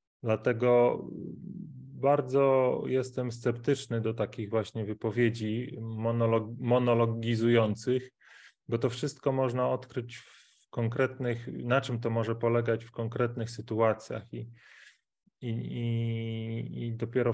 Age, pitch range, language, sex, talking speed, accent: 30-49, 110-125 Hz, Polish, male, 95 wpm, native